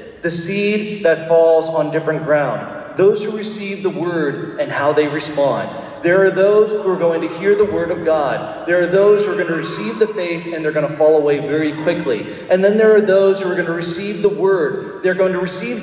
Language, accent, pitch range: English, American, 155-200 Hz